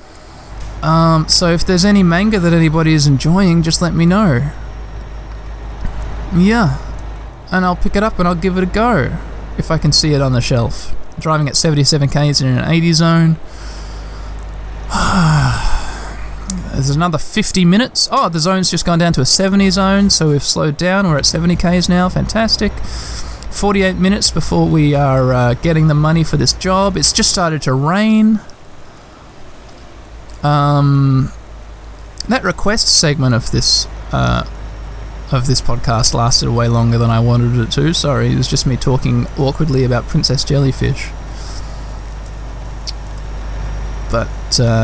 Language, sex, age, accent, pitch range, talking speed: English, male, 20-39, Australian, 115-170 Hz, 150 wpm